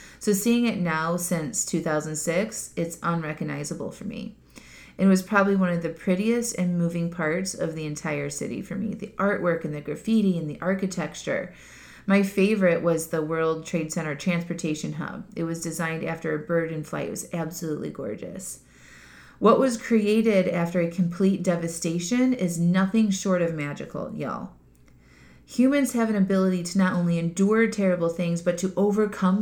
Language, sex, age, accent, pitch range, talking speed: English, female, 30-49, American, 170-200 Hz, 165 wpm